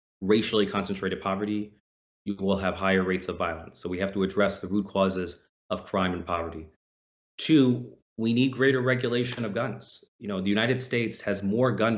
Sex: male